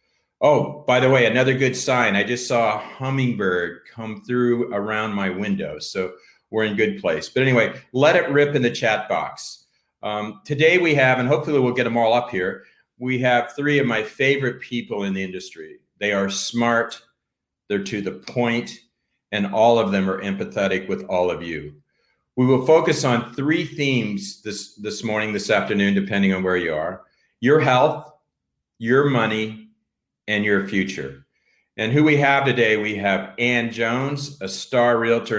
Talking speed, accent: 180 wpm, American